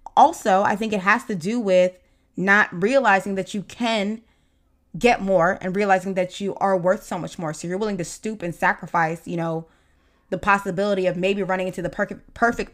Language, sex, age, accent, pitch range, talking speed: English, female, 20-39, American, 175-215 Hz, 195 wpm